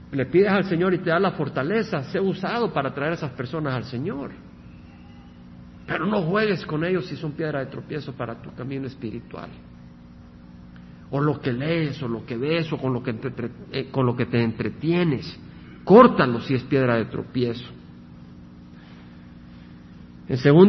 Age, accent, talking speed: 50-69, Mexican, 170 wpm